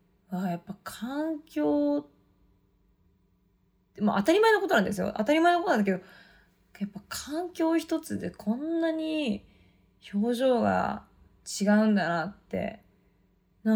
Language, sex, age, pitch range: Japanese, female, 20-39, 180-230 Hz